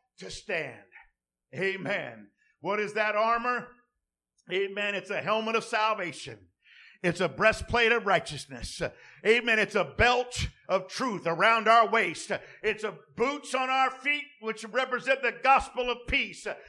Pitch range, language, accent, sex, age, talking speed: 190-245 Hz, English, American, male, 50-69, 140 wpm